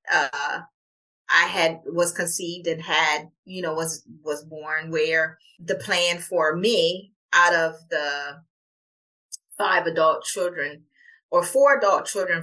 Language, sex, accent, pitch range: English, female, American, 155-210 Hz